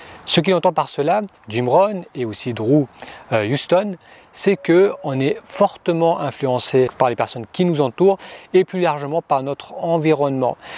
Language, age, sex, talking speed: French, 30-49, male, 155 wpm